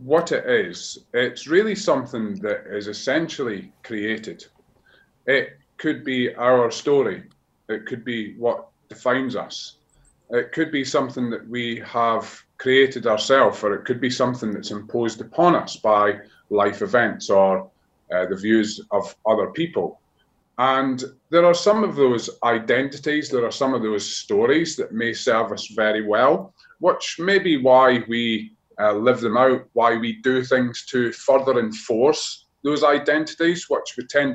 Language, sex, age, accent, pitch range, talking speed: English, male, 30-49, British, 115-165 Hz, 155 wpm